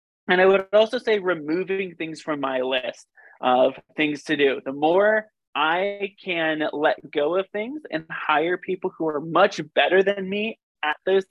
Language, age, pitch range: English, 20-39, 145-195 Hz